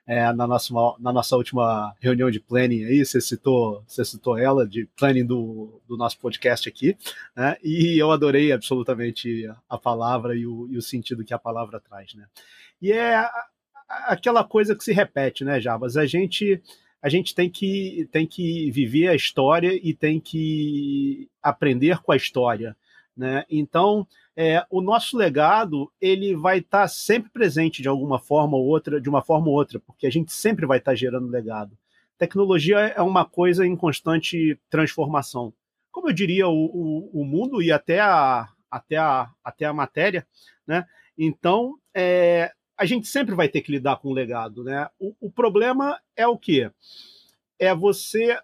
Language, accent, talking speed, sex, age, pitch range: Portuguese, Brazilian, 175 wpm, male, 40-59, 125-190 Hz